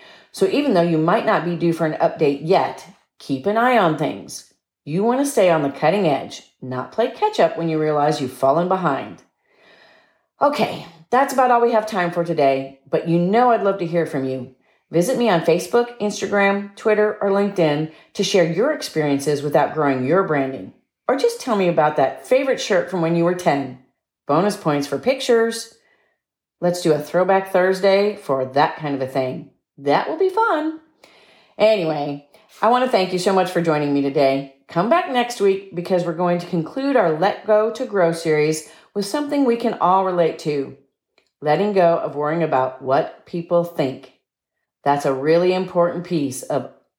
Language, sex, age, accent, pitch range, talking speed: English, female, 40-59, American, 150-205 Hz, 190 wpm